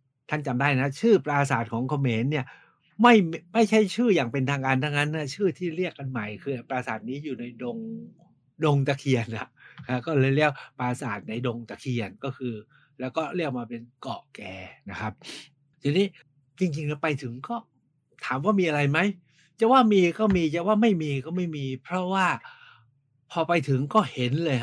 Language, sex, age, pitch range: Thai, male, 60-79, 120-155 Hz